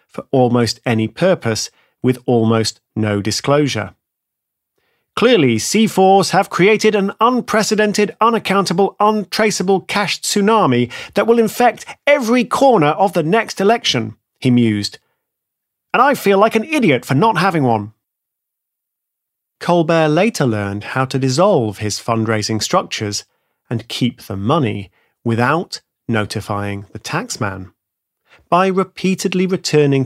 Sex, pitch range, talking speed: male, 115-185 Hz, 120 wpm